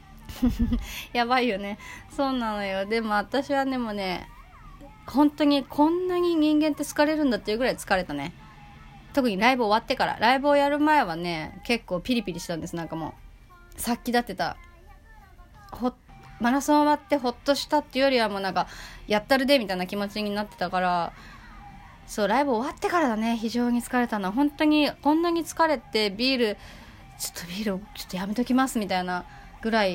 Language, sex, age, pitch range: Japanese, female, 30-49, 195-275 Hz